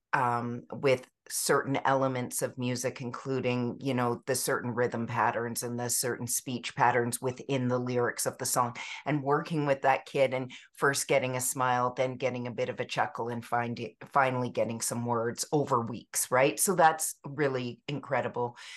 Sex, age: female, 50-69